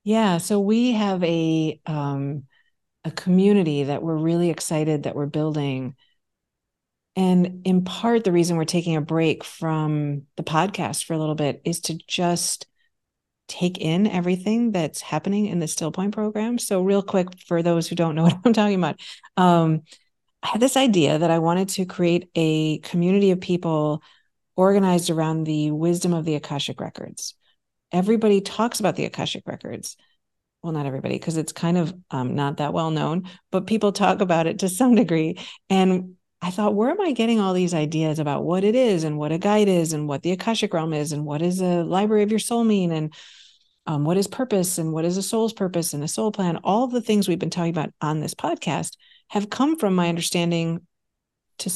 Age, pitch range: 50-69, 160-200 Hz